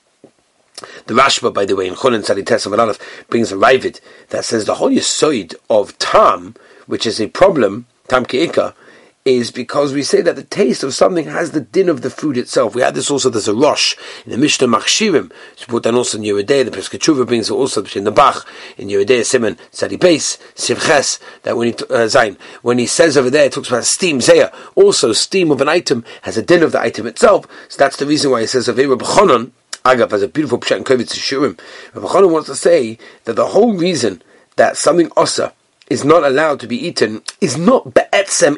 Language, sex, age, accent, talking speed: English, male, 40-59, British, 200 wpm